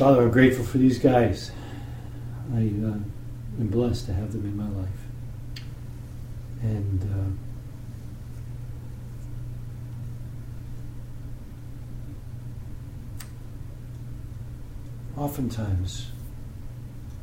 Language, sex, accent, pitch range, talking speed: English, male, American, 115-120 Hz, 65 wpm